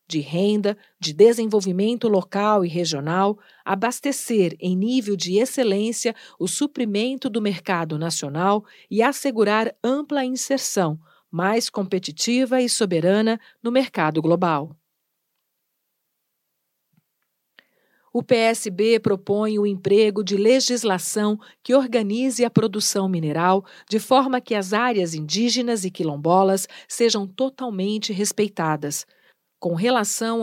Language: Portuguese